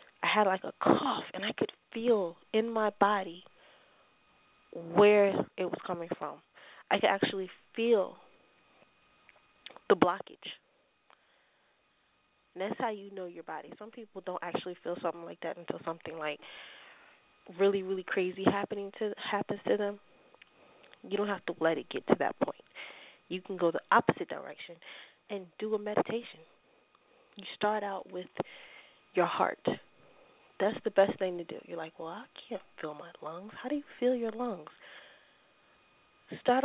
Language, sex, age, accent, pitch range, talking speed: English, female, 20-39, American, 180-230 Hz, 155 wpm